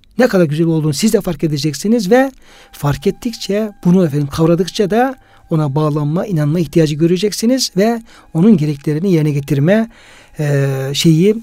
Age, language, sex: 60-79, Turkish, male